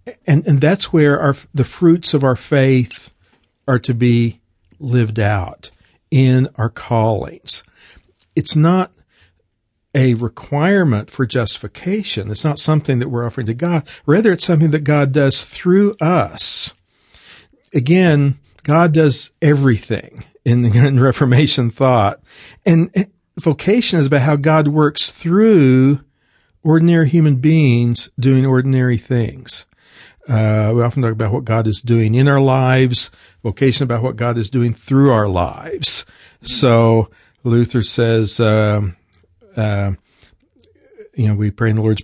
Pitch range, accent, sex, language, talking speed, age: 110-140 Hz, American, male, English, 135 wpm, 50-69